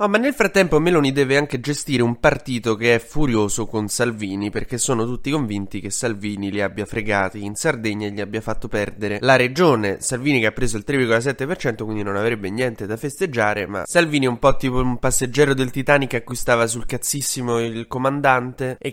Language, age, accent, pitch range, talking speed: Italian, 20-39, native, 110-140 Hz, 195 wpm